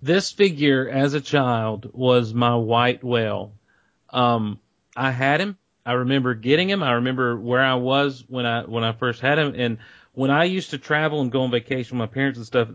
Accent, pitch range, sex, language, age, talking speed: American, 115-130 Hz, male, English, 40-59, 205 wpm